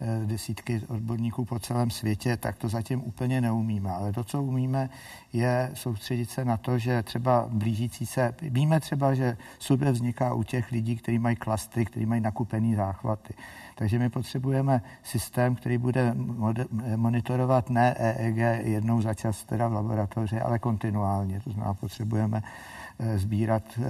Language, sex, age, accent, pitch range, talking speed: Czech, male, 50-69, native, 110-125 Hz, 150 wpm